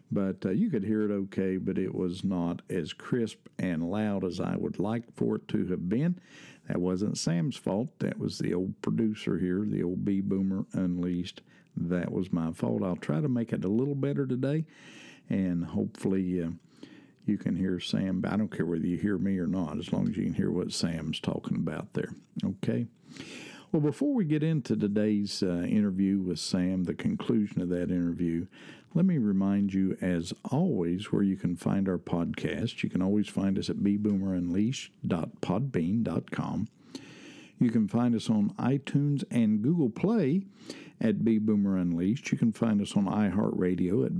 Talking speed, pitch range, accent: 180 wpm, 90-145 Hz, American